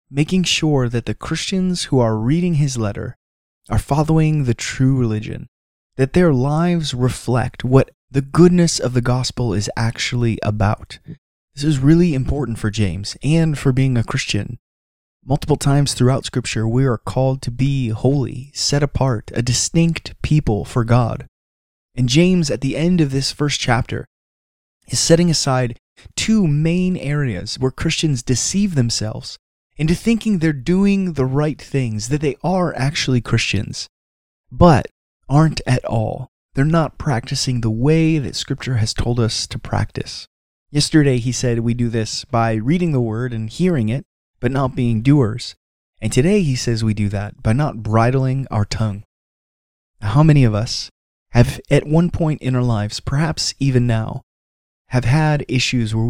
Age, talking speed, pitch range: 20-39, 160 wpm, 110-145 Hz